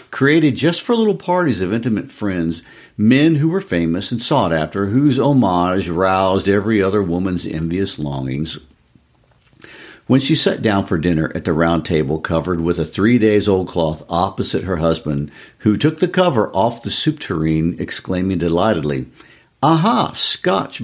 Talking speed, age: 155 wpm, 50-69